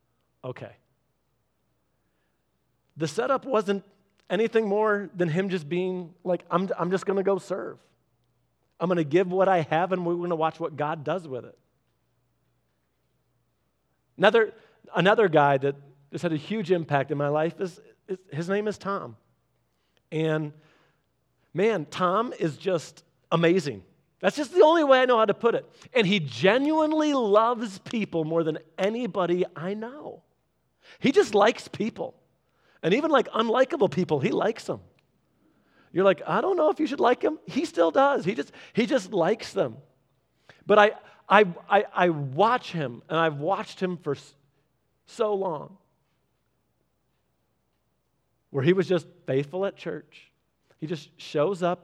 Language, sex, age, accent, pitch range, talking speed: English, male, 40-59, American, 155-195 Hz, 155 wpm